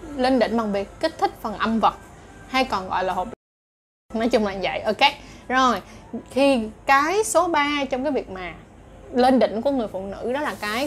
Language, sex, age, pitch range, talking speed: Vietnamese, female, 20-39, 215-275 Hz, 215 wpm